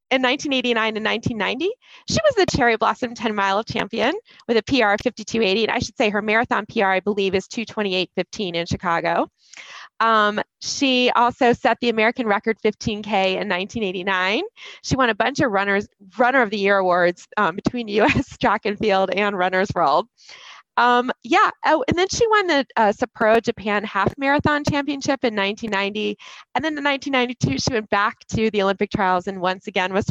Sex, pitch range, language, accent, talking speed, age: female, 195-250 Hz, English, American, 185 wpm, 20-39